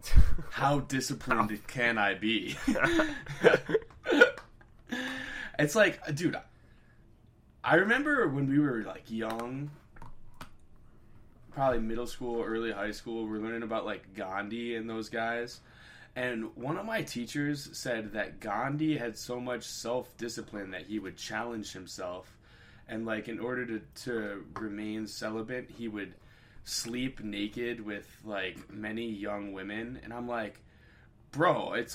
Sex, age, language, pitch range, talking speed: male, 20-39, English, 105-130 Hz, 130 wpm